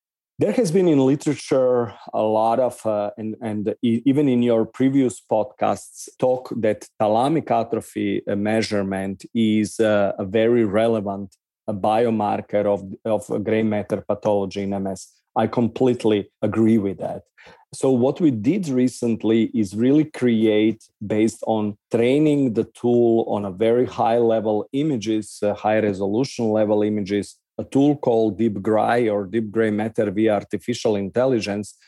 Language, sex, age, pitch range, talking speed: English, male, 40-59, 105-120 Hz, 135 wpm